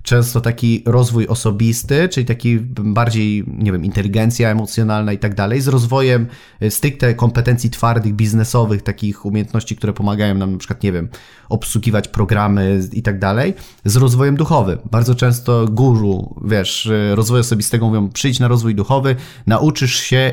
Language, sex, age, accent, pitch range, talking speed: Polish, male, 30-49, native, 105-125 Hz, 150 wpm